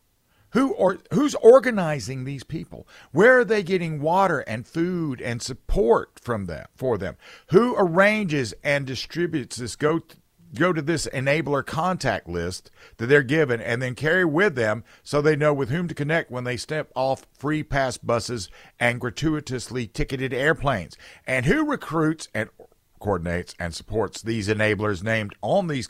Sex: male